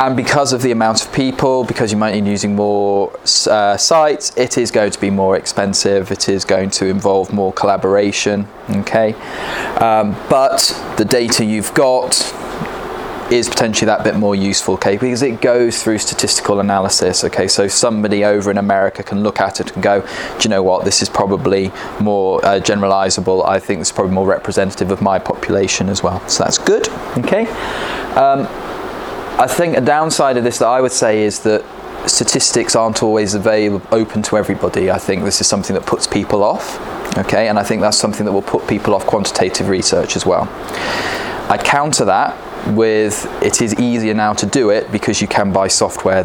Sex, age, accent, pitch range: male, 20-39, British, 95-115 Hz